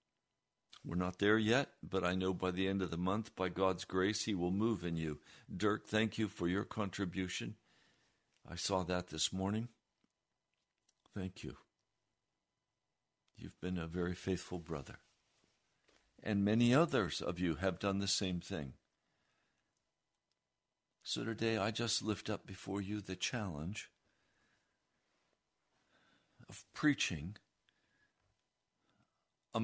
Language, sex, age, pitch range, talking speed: English, male, 60-79, 95-120 Hz, 130 wpm